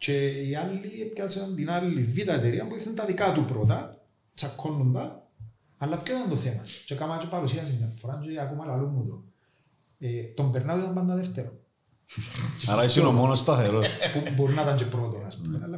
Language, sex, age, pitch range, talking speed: Greek, male, 40-59, 120-155 Hz, 170 wpm